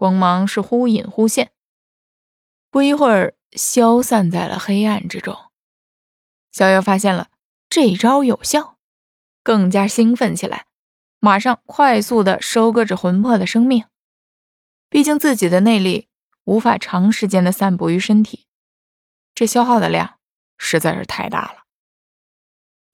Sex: female